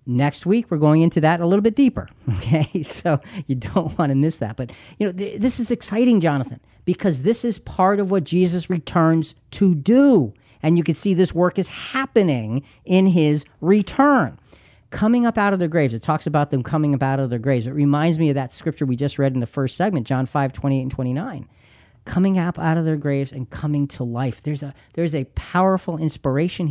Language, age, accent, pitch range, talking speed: English, 40-59, American, 125-170 Hz, 215 wpm